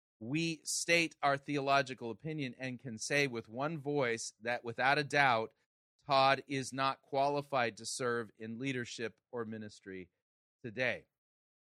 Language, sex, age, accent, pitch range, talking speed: English, male, 40-59, American, 115-145 Hz, 135 wpm